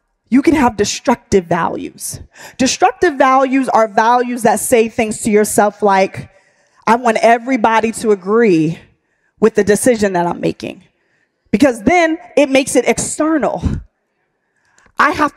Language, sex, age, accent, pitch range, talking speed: English, female, 20-39, American, 230-310 Hz, 135 wpm